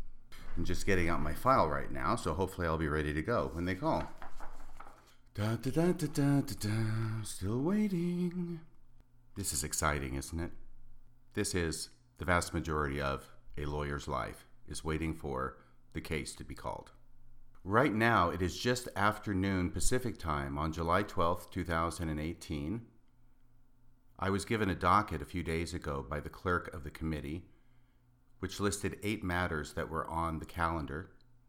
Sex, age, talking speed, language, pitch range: male, 40-59, 170 wpm, English, 80-110 Hz